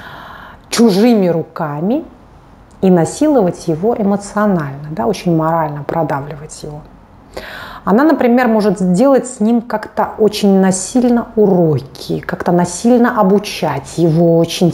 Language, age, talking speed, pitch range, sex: Russian, 30-49, 100 wpm, 175-245 Hz, female